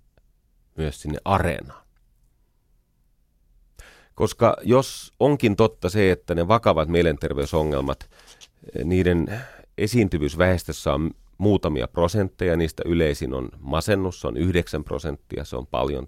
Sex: male